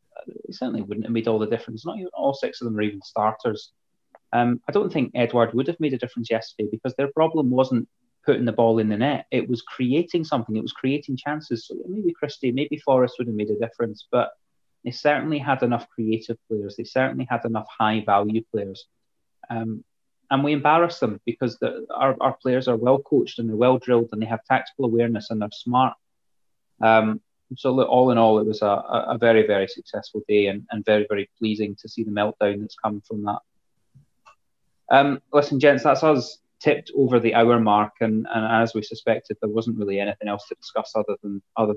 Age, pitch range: 30-49, 105-125 Hz